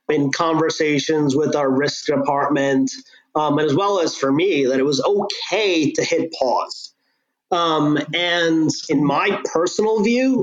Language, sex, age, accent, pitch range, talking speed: English, male, 30-49, American, 145-180 Hz, 150 wpm